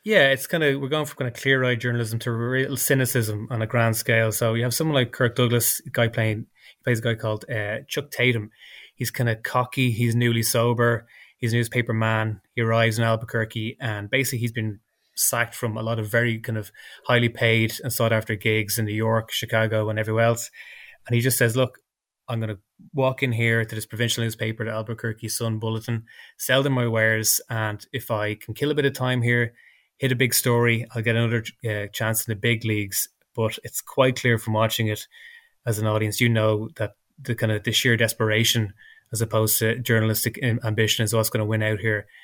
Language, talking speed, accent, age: English, 215 wpm, Irish, 20-39